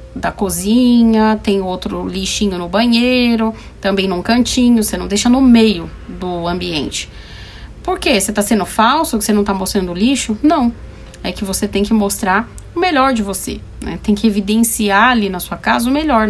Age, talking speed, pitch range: 30-49, 185 wpm, 200-255 Hz